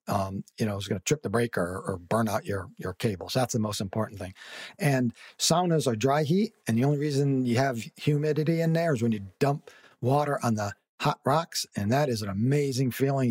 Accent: American